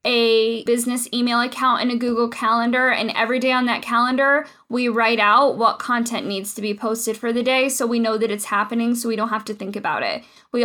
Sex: female